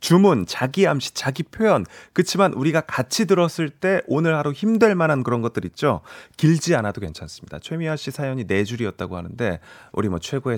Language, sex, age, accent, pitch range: Korean, male, 30-49, native, 105-175 Hz